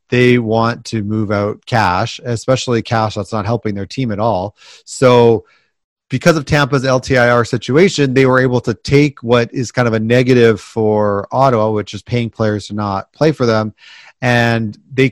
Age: 30-49